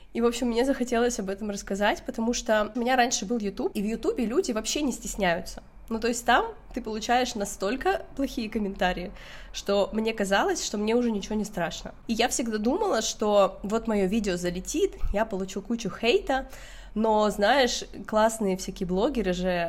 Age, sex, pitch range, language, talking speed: 20-39, female, 190-240 Hz, Russian, 180 wpm